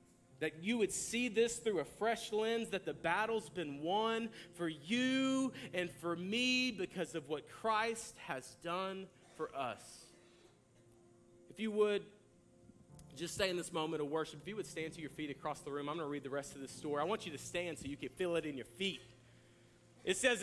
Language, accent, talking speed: English, American, 205 wpm